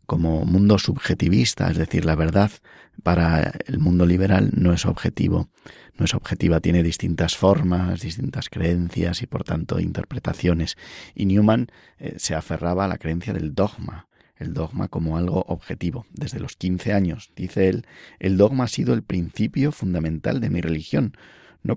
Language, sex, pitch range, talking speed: Spanish, male, 85-100 Hz, 160 wpm